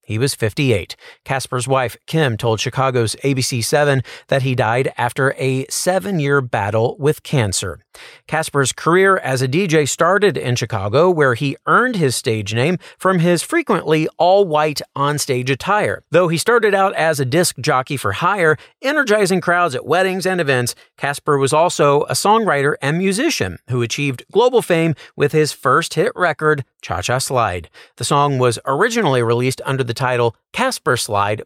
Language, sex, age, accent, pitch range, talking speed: English, male, 40-59, American, 125-175 Hz, 155 wpm